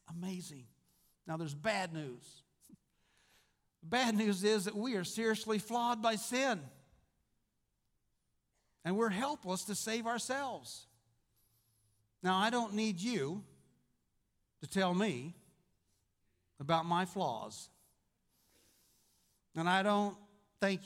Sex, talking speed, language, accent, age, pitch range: male, 105 wpm, English, American, 60-79, 165-230 Hz